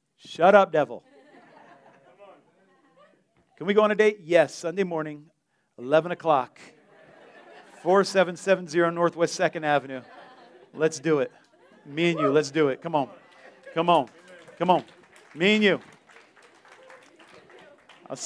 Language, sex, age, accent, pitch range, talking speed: English, male, 40-59, American, 155-210 Hz, 120 wpm